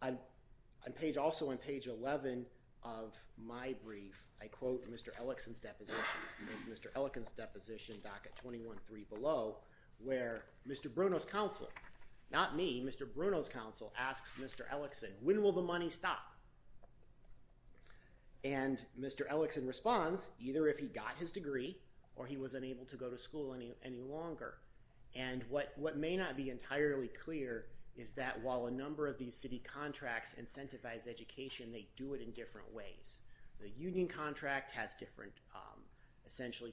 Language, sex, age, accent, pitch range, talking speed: English, male, 40-59, American, 115-140 Hz, 150 wpm